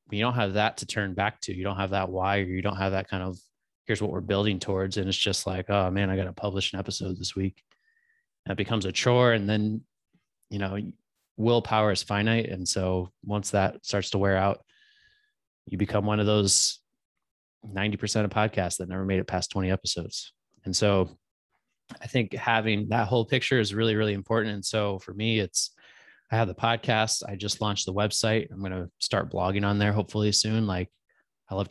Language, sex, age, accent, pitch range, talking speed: English, male, 20-39, American, 95-110 Hz, 210 wpm